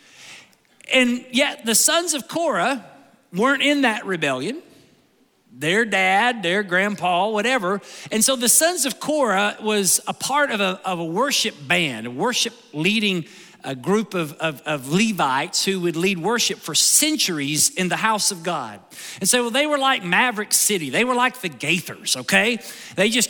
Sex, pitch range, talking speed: male, 180-255 Hz, 160 wpm